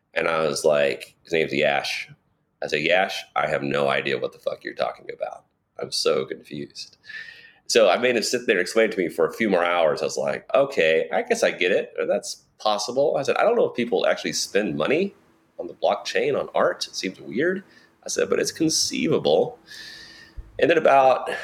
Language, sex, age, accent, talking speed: English, male, 30-49, American, 215 wpm